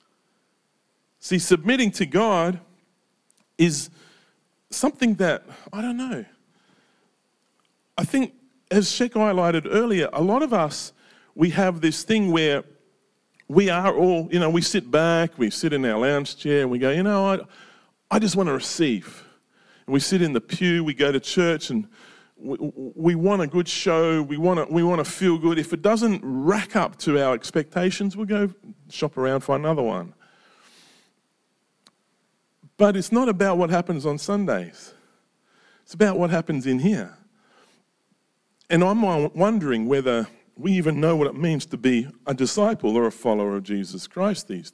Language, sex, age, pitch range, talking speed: English, male, 40-59, 140-200 Hz, 170 wpm